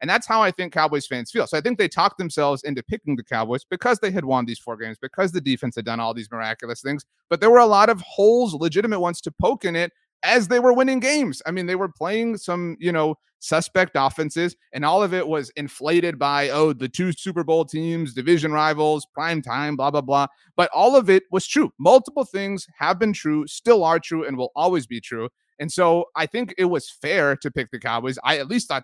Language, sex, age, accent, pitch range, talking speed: English, male, 30-49, American, 135-190 Hz, 240 wpm